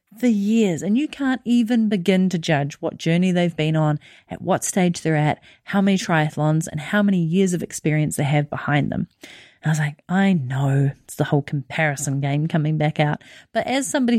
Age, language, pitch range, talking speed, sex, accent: 40-59, English, 160-220 Hz, 205 wpm, female, Australian